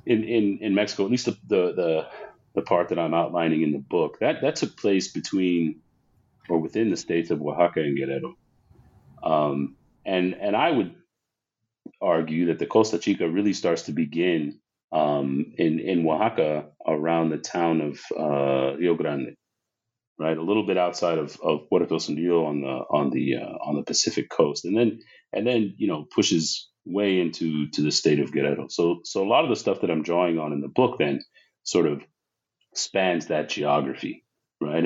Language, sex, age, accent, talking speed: English, male, 40-59, American, 185 wpm